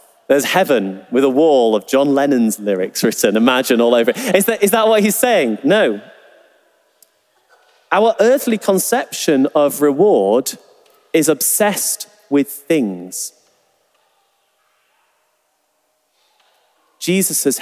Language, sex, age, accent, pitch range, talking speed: English, male, 30-49, British, 125-190 Hz, 110 wpm